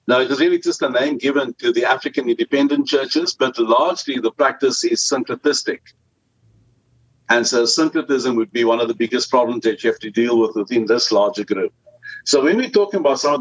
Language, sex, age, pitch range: English, male, 60-79, 115-160 Hz